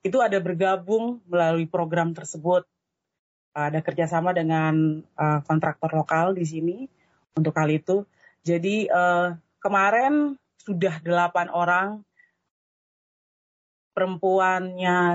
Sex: female